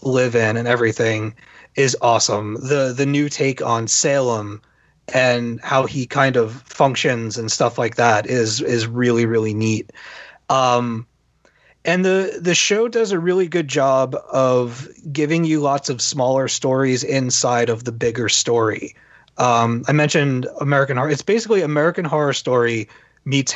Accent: American